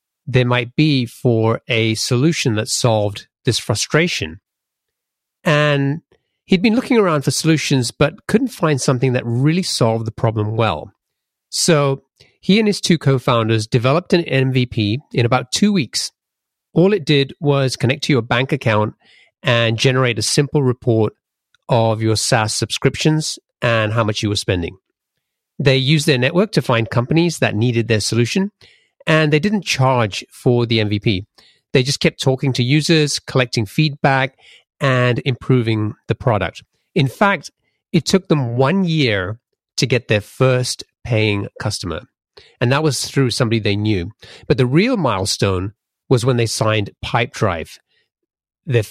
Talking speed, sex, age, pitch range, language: 155 wpm, male, 40-59, 115-150 Hz, English